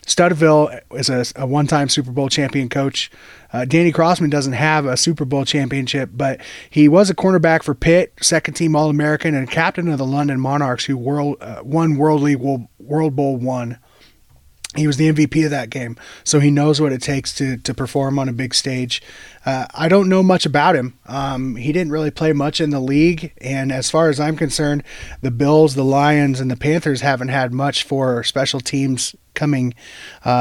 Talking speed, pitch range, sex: 195 wpm, 125-150 Hz, male